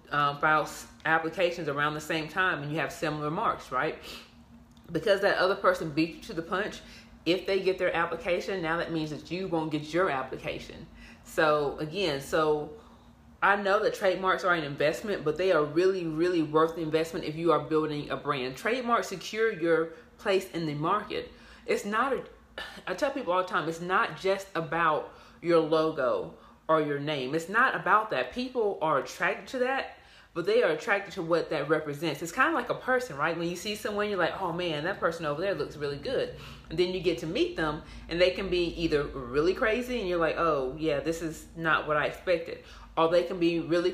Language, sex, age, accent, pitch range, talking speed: English, female, 30-49, American, 160-195 Hz, 210 wpm